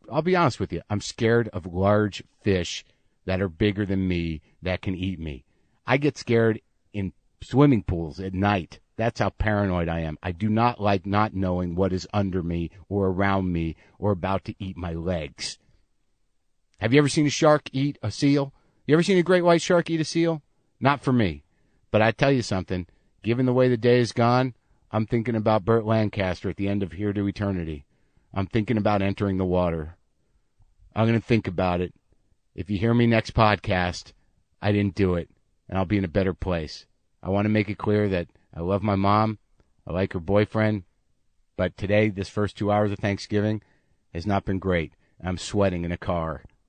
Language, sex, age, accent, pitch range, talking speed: English, male, 50-69, American, 90-110 Hz, 205 wpm